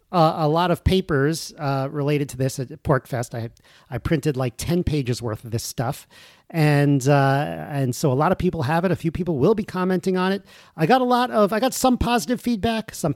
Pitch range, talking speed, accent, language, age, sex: 135-180 Hz, 230 wpm, American, English, 40-59, male